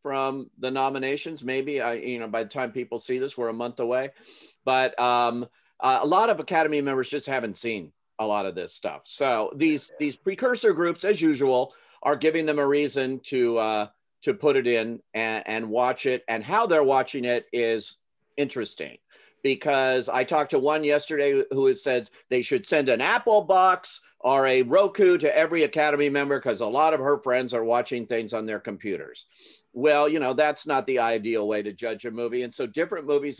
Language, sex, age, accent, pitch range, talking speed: English, male, 50-69, American, 115-150 Hz, 200 wpm